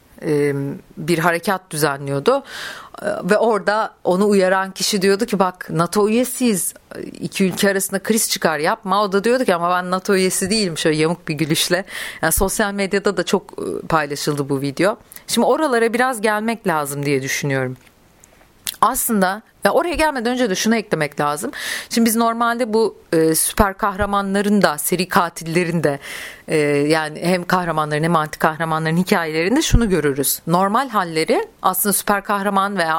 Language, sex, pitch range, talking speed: Turkish, female, 165-210 Hz, 150 wpm